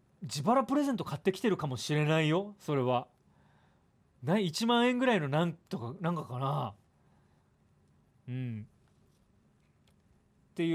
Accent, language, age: native, Japanese, 40-59